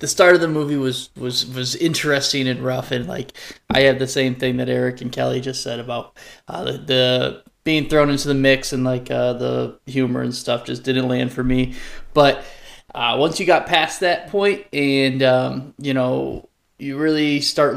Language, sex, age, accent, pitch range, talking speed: English, male, 20-39, American, 125-145 Hz, 205 wpm